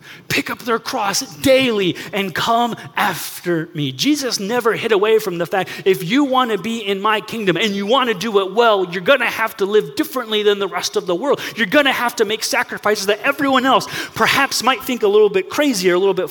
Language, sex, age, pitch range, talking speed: English, male, 30-49, 190-265 Hz, 240 wpm